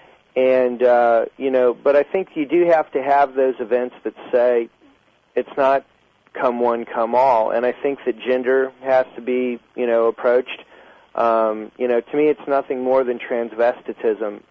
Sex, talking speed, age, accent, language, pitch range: male, 180 wpm, 40-59, American, English, 115-135 Hz